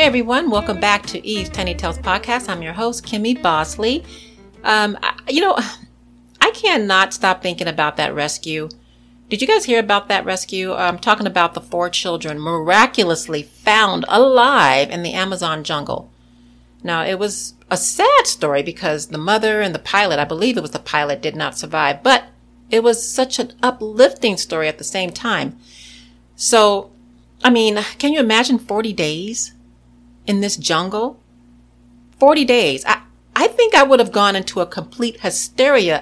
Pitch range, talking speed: 150-220 Hz, 165 wpm